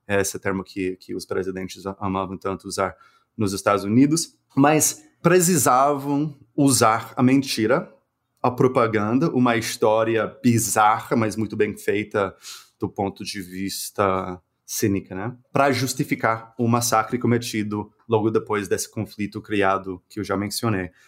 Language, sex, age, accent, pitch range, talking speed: Portuguese, male, 30-49, Brazilian, 105-135 Hz, 130 wpm